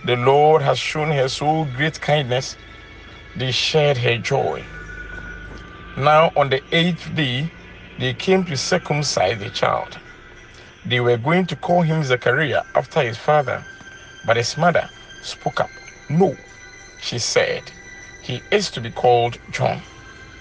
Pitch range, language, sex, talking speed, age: 115-160 Hz, English, male, 140 wpm, 50-69